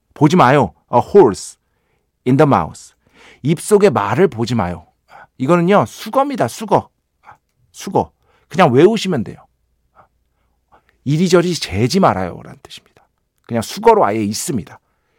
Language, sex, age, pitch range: Korean, male, 50-69, 115-175 Hz